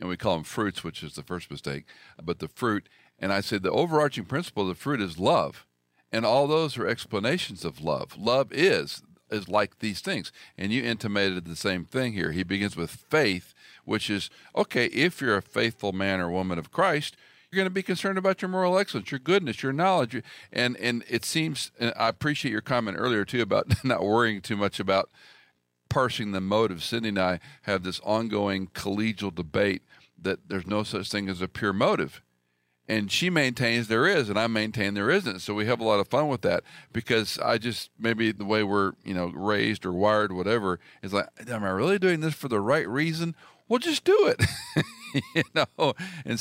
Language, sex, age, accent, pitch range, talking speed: English, male, 50-69, American, 95-125 Hz, 210 wpm